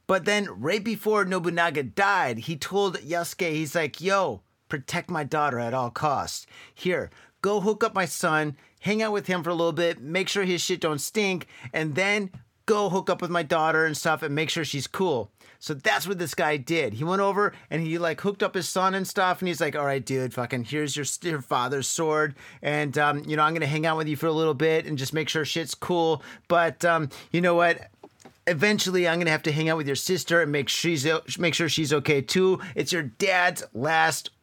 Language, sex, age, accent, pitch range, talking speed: English, male, 30-49, American, 145-185 Hz, 230 wpm